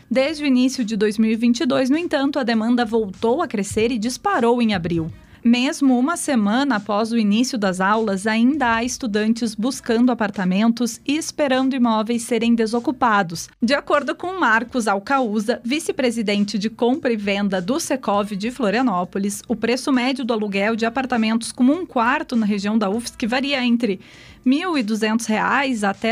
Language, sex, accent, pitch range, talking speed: Portuguese, female, Brazilian, 210-255 Hz, 155 wpm